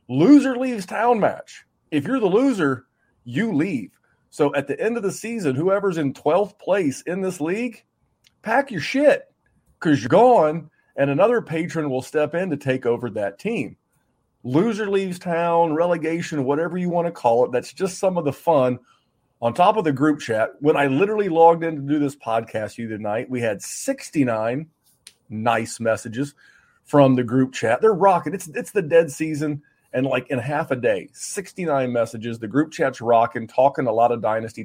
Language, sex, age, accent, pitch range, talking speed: English, male, 40-59, American, 125-170 Hz, 185 wpm